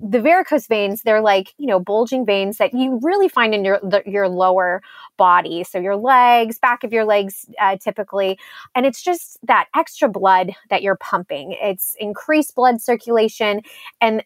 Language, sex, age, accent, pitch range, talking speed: English, female, 20-39, American, 195-245 Hz, 175 wpm